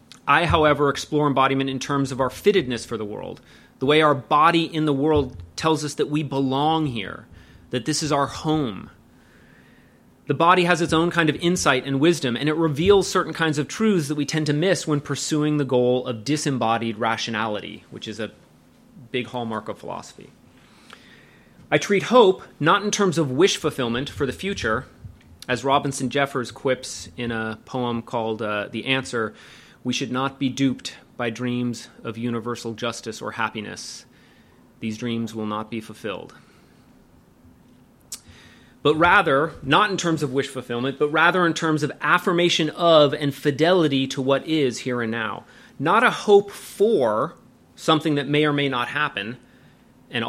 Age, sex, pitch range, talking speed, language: 30-49, male, 120-160 Hz, 170 wpm, English